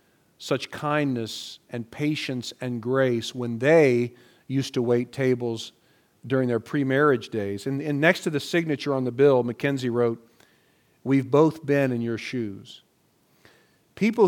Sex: male